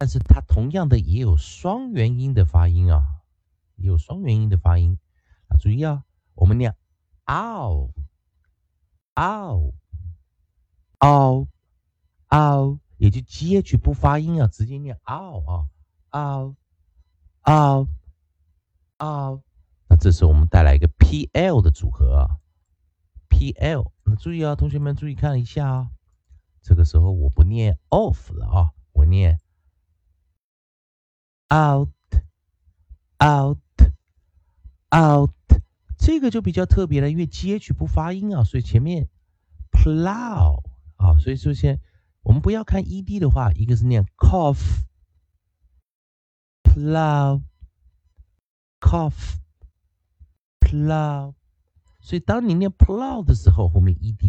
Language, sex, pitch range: Chinese, male, 75-130 Hz